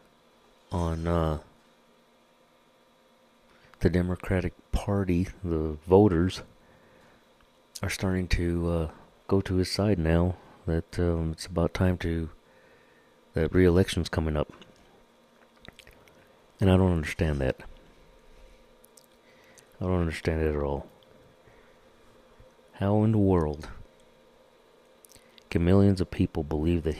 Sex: male